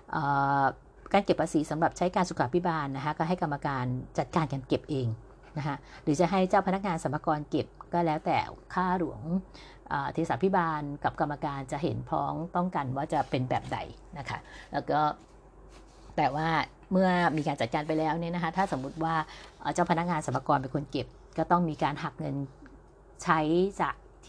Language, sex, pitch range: Thai, female, 135-175 Hz